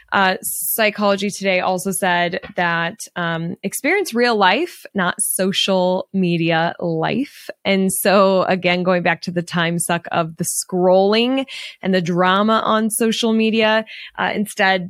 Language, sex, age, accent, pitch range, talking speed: English, female, 20-39, American, 185-220 Hz, 135 wpm